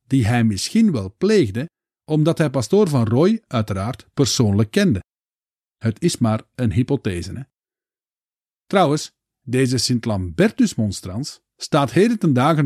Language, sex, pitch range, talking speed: Dutch, male, 110-165 Hz, 125 wpm